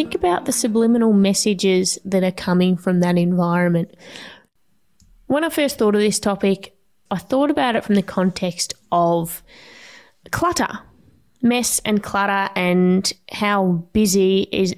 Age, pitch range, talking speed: 20-39, 185-230 Hz, 140 wpm